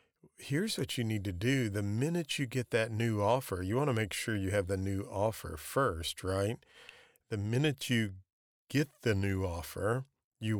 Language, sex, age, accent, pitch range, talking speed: English, male, 50-69, American, 100-120 Hz, 185 wpm